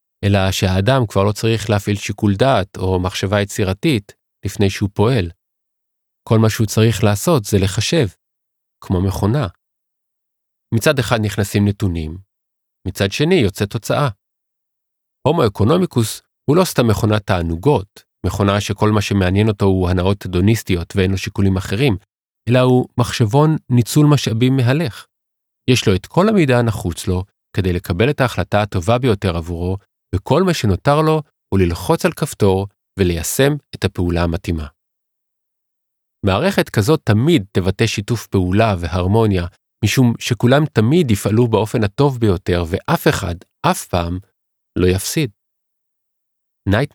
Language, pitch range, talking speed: Hebrew, 95-125 Hz, 130 wpm